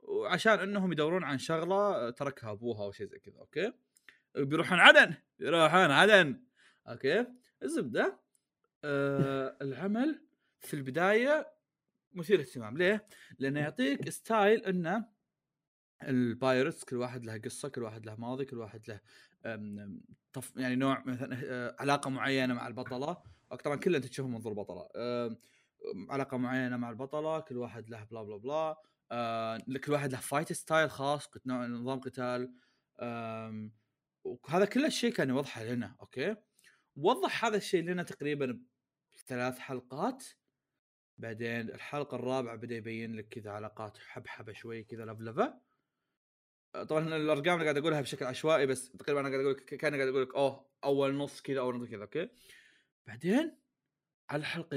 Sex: male